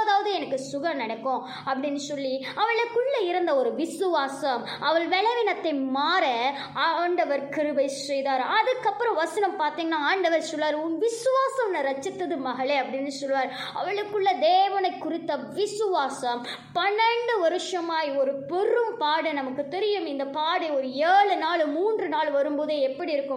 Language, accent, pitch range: Tamil, native, 280-395 Hz